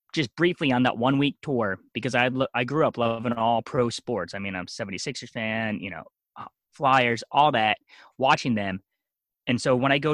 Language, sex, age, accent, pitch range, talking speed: English, male, 30-49, American, 100-130 Hz, 195 wpm